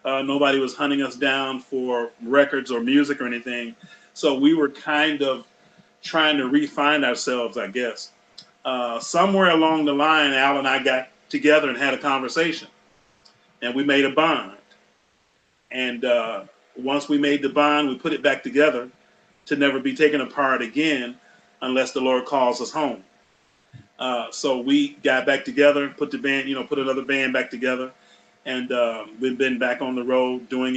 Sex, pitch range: male, 130-160 Hz